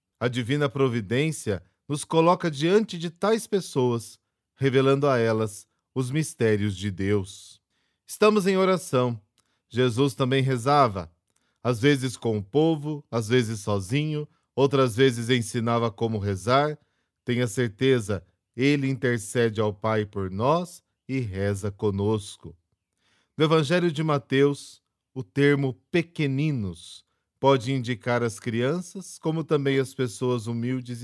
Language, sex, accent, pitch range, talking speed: Portuguese, male, Brazilian, 110-145 Hz, 120 wpm